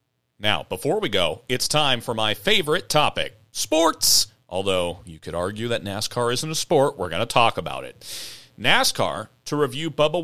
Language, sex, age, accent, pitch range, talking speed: English, male, 40-59, American, 100-140 Hz, 175 wpm